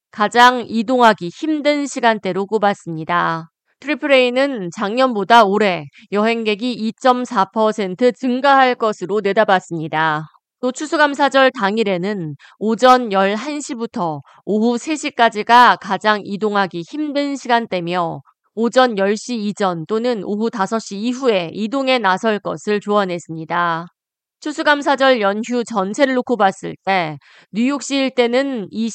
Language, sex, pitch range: Korean, female, 195-250 Hz